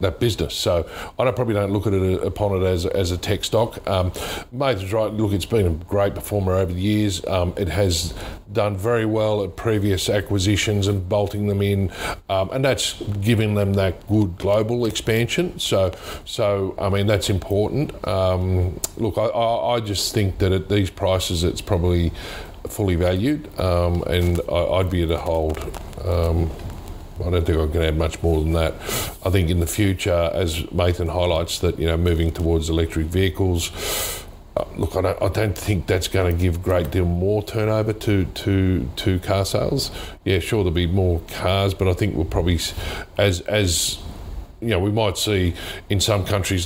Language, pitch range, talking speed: English, 85-100 Hz, 190 wpm